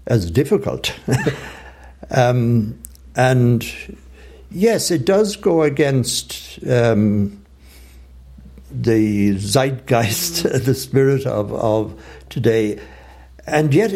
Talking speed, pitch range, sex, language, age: 80 wpm, 95-135 Hz, male, English, 60-79